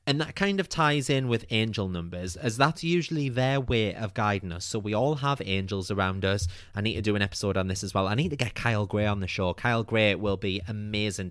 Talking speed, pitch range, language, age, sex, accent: 255 wpm, 95-145 Hz, English, 20-39, male, British